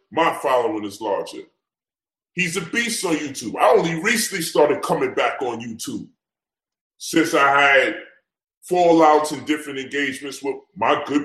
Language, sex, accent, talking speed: English, female, American, 145 wpm